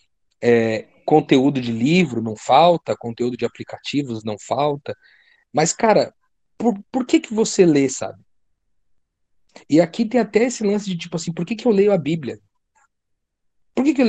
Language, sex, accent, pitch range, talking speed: Portuguese, male, Brazilian, 115-175 Hz, 170 wpm